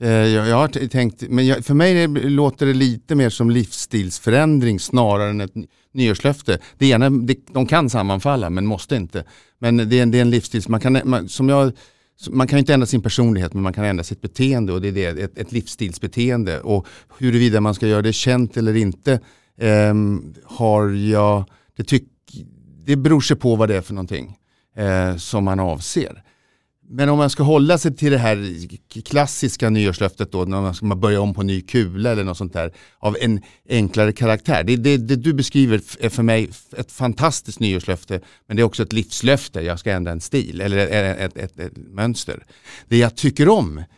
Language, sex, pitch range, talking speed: Swedish, male, 100-130 Hz, 190 wpm